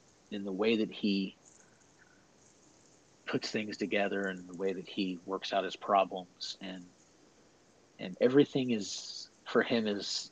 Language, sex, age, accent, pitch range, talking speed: English, male, 40-59, American, 95-110 Hz, 140 wpm